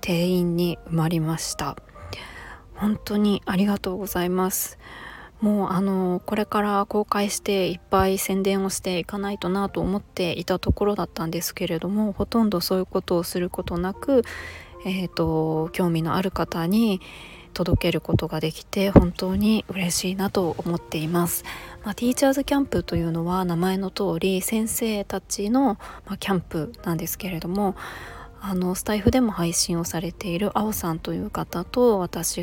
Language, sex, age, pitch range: Japanese, female, 20-39, 175-210 Hz